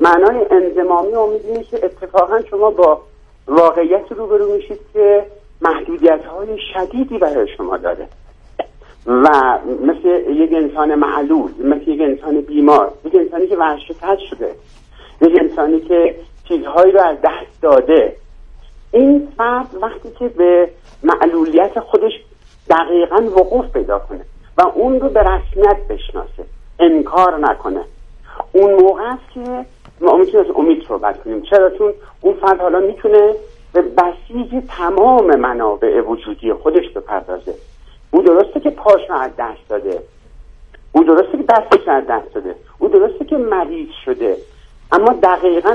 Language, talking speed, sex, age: Persian, 130 wpm, male, 50-69